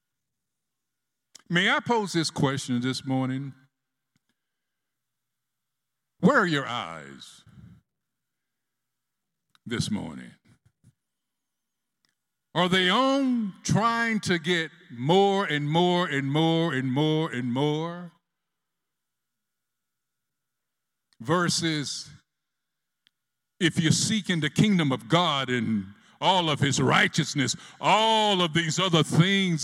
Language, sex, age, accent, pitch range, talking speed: English, male, 60-79, American, 145-195 Hz, 95 wpm